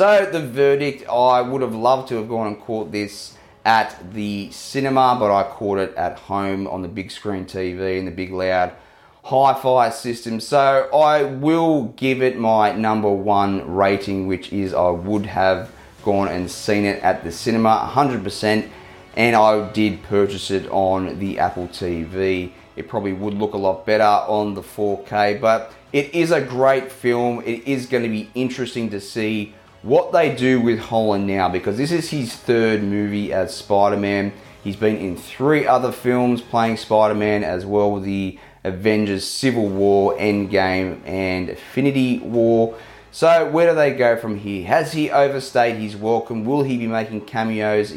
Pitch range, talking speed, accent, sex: 100-125 Hz, 175 wpm, Australian, male